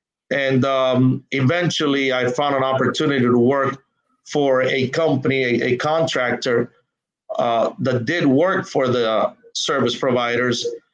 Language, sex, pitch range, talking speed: English, male, 125-140 Hz, 125 wpm